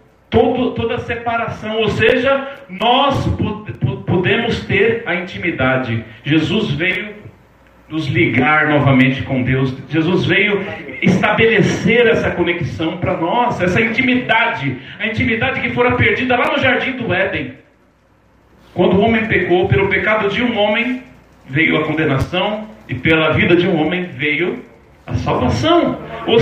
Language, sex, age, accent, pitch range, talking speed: Portuguese, male, 40-59, Brazilian, 150-245 Hz, 130 wpm